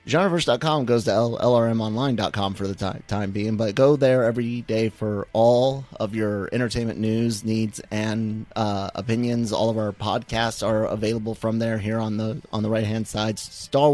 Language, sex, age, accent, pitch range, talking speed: English, male, 30-49, American, 110-130 Hz, 180 wpm